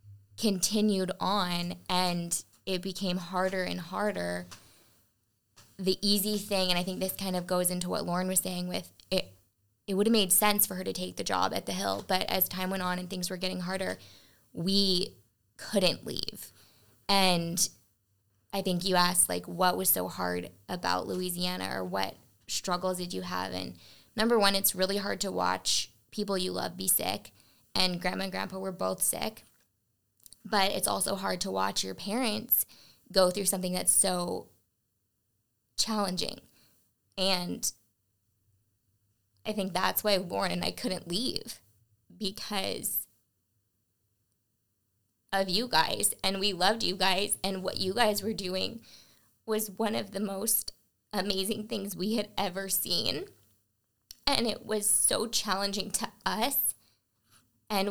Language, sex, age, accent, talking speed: English, female, 20-39, American, 155 wpm